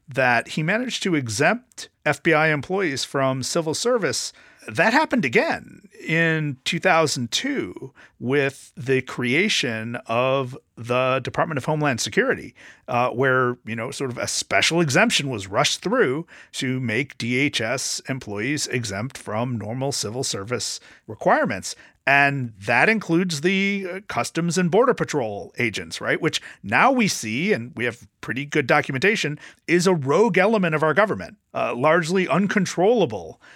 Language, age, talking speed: English, 40-59, 140 wpm